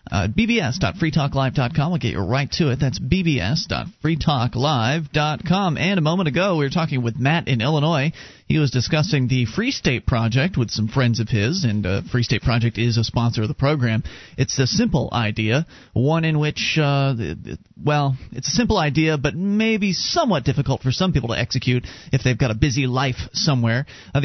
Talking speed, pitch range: 190 wpm, 120-155 Hz